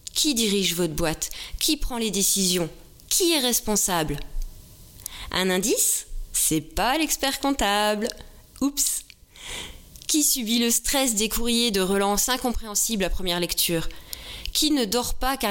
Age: 20-39